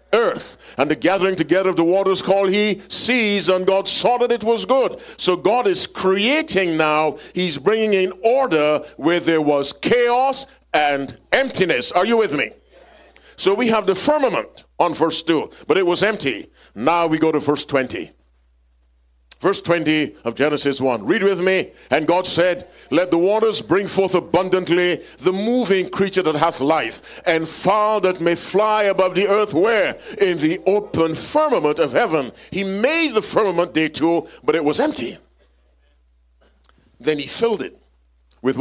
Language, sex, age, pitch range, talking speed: English, male, 50-69, 140-195 Hz, 170 wpm